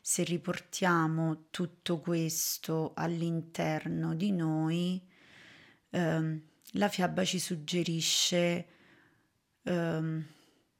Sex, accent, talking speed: female, native, 70 wpm